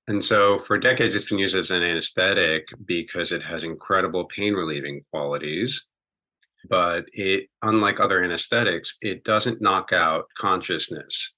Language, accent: English, American